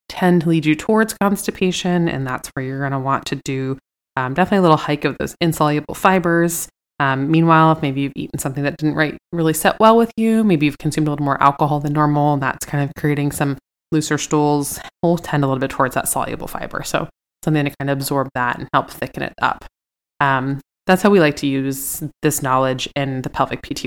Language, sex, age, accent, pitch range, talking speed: English, female, 20-39, American, 135-160 Hz, 225 wpm